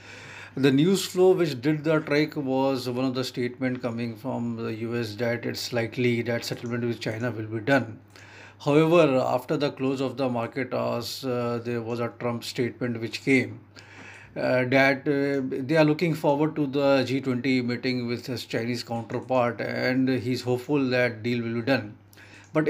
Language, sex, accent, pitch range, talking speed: English, male, Indian, 120-140 Hz, 175 wpm